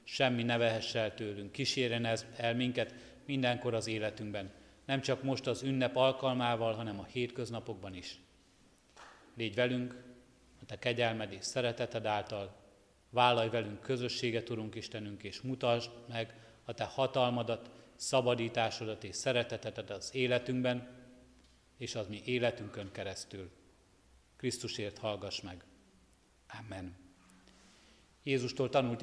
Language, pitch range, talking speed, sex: Hungarian, 105-125 Hz, 115 wpm, male